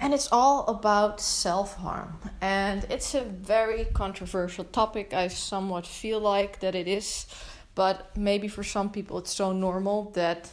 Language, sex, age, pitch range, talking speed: English, female, 20-39, 185-225 Hz, 155 wpm